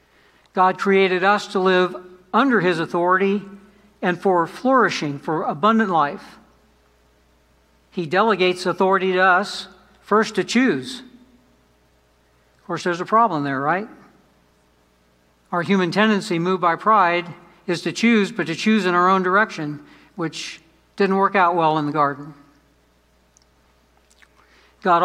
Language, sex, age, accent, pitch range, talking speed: English, male, 60-79, American, 165-200 Hz, 130 wpm